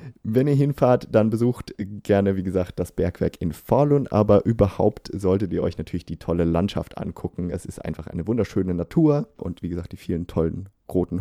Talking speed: 185 wpm